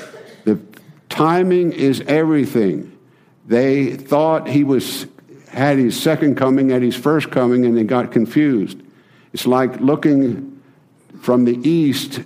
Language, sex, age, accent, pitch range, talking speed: English, male, 60-79, American, 115-145 Hz, 120 wpm